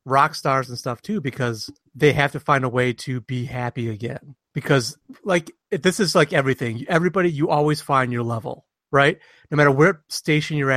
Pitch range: 125-150 Hz